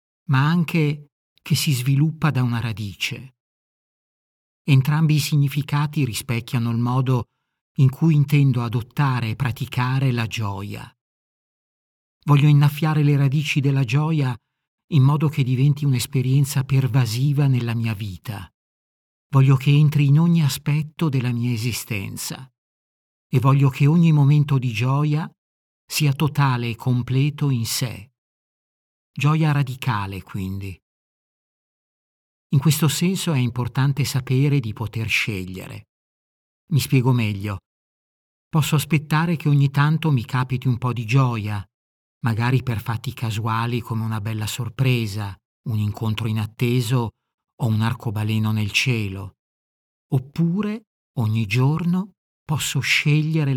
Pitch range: 115-145 Hz